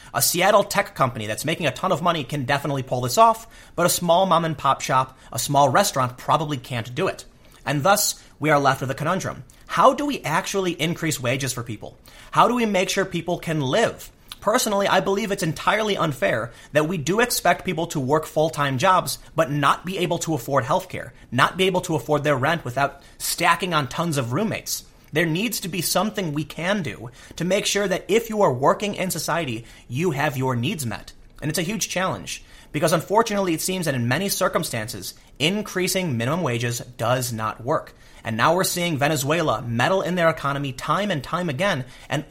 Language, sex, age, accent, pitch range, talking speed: English, male, 30-49, American, 130-185 Hz, 200 wpm